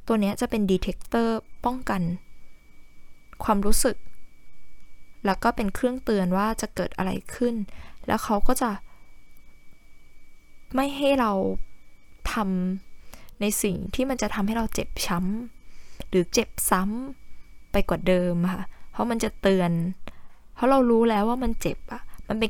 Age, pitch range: 10-29, 185-235 Hz